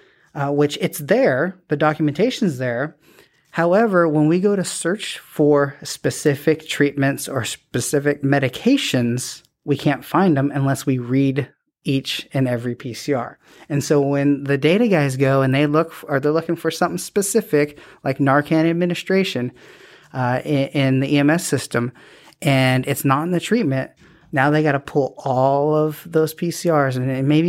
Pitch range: 135-160 Hz